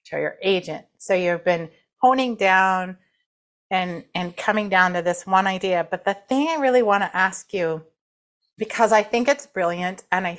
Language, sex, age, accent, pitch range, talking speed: English, female, 30-49, American, 175-215 Hz, 185 wpm